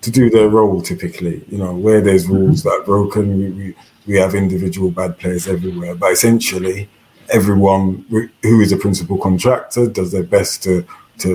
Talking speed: 175 wpm